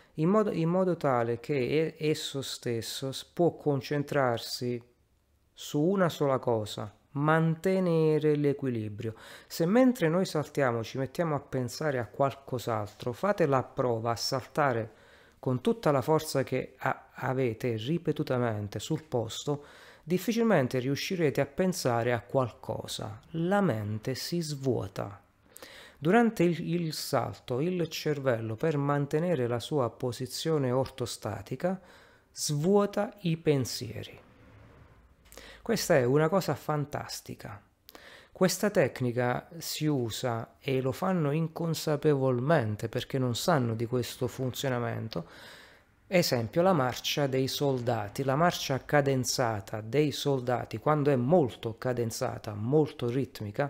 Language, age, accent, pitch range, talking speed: Italian, 30-49, native, 120-155 Hz, 110 wpm